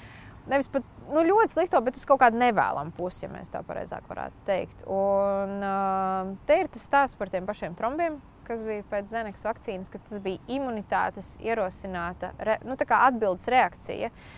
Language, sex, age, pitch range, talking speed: English, female, 20-39, 200-285 Hz, 175 wpm